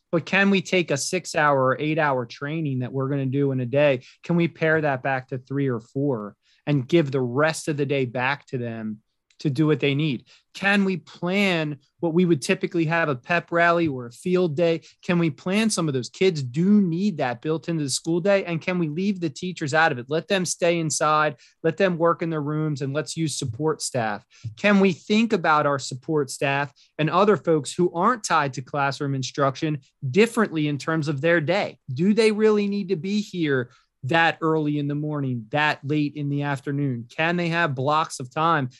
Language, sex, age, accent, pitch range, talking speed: English, male, 20-39, American, 140-180 Hz, 215 wpm